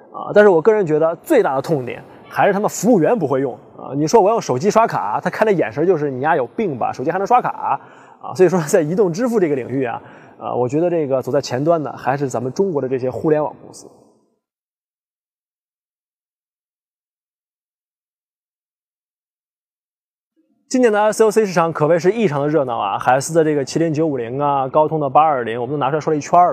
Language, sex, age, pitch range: Chinese, male, 20-39, 140-195 Hz